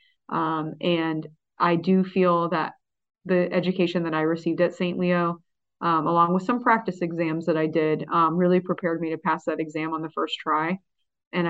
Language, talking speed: English, 190 wpm